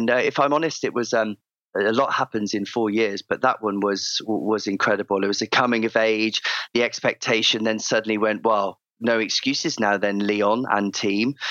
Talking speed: 205 wpm